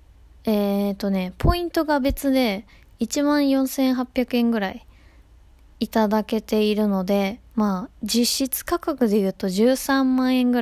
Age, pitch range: 20-39, 190-245 Hz